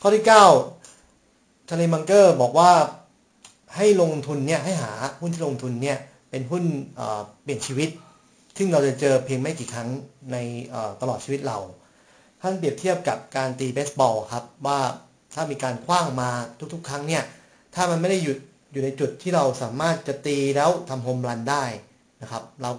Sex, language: male, Thai